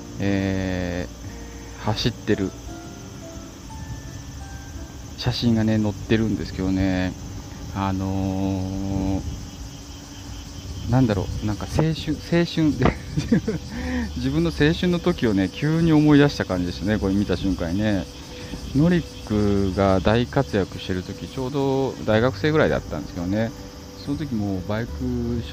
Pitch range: 95-125 Hz